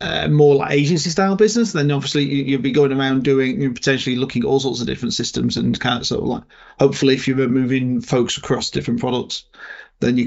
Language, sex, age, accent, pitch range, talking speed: English, male, 30-49, British, 130-150 Hz, 220 wpm